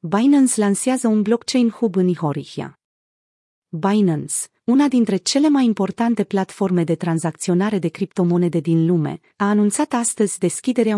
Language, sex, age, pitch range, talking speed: Romanian, female, 30-49, 180-230 Hz, 130 wpm